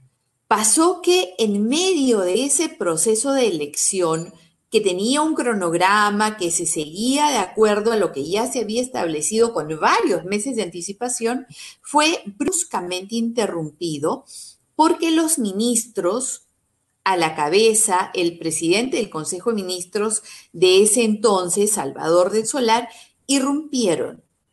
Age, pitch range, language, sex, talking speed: 40-59, 185-270 Hz, Spanish, female, 125 wpm